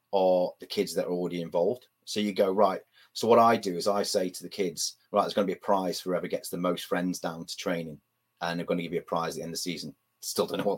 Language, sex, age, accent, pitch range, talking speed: English, male, 30-49, British, 100-125 Hz, 305 wpm